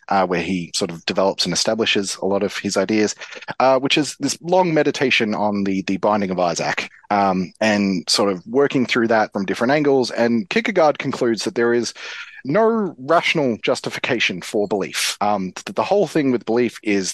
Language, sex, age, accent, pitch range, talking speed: English, male, 30-49, Australian, 95-130 Hz, 190 wpm